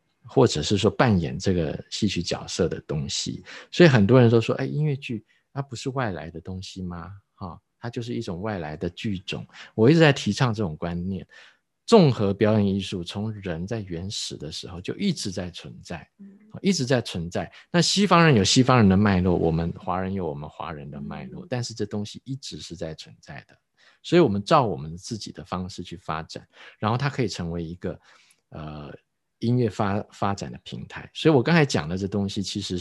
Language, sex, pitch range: Chinese, male, 90-120 Hz